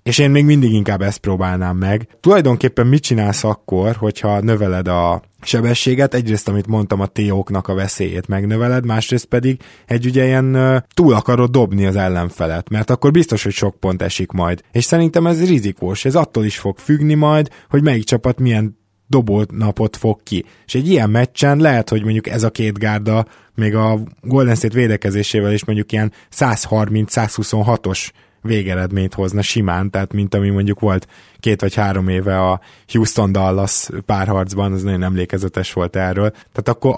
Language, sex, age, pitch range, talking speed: Hungarian, male, 20-39, 100-125 Hz, 170 wpm